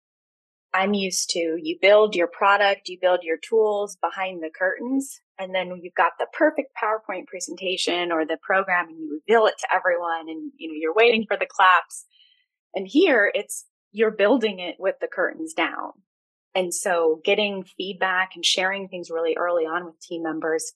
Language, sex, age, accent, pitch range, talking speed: English, female, 20-39, American, 170-235 Hz, 185 wpm